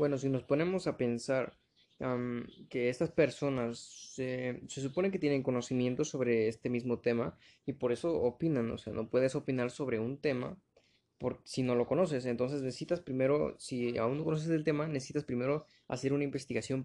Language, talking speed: Spanish, 185 wpm